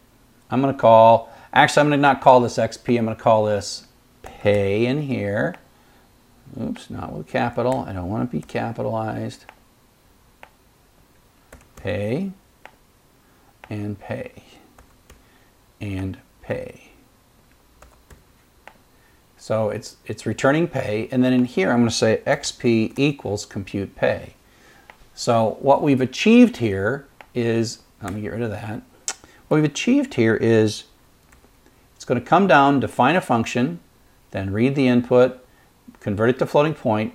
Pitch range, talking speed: 110-135 Hz, 130 wpm